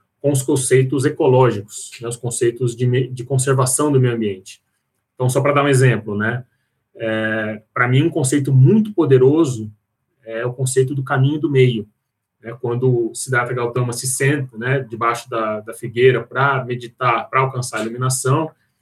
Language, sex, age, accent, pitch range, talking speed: Portuguese, male, 20-39, Brazilian, 115-130 Hz, 170 wpm